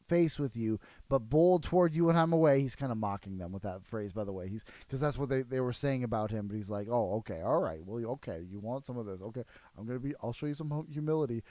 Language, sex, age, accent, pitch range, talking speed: English, male, 30-49, American, 105-150 Hz, 280 wpm